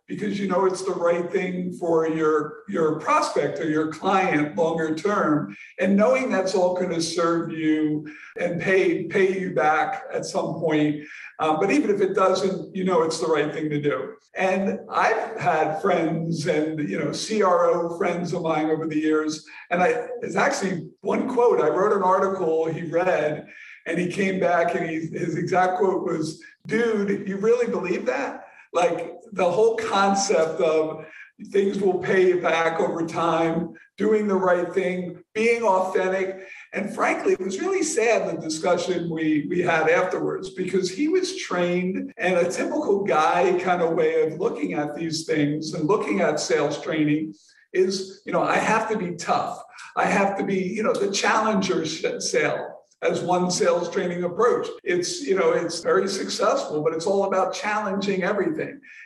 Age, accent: 50-69, American